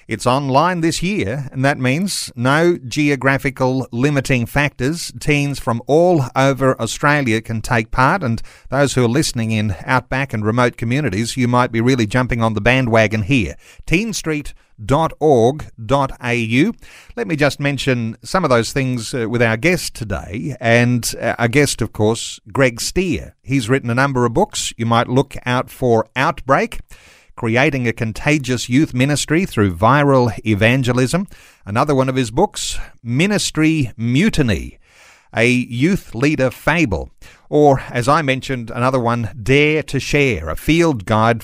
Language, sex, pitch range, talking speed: English, male, 115-140 Hz, 145 wpm